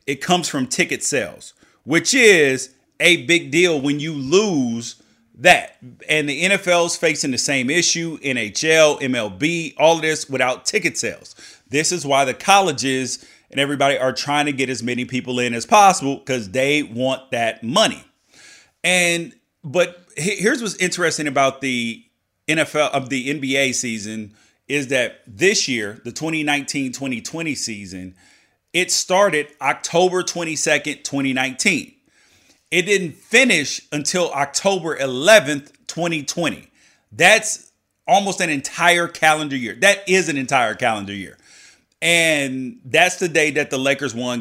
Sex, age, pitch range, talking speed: male, 30-49, 130-175 Hz, 140 wpm